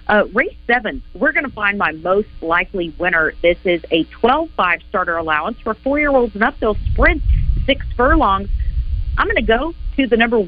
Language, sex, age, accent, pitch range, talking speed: English, female, 40-59, American, 175-225 Hz, 185 wpm